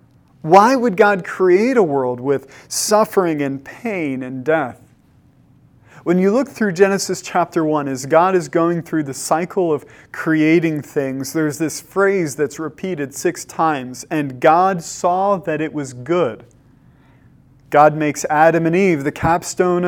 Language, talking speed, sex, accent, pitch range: English, 150 wpm, male, American, 140-185 Hz